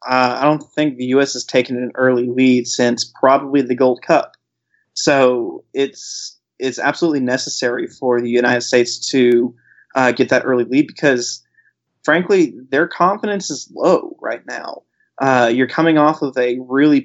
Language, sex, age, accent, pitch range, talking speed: English, male, 20-39, American, 125-140 Hz, 160 wpm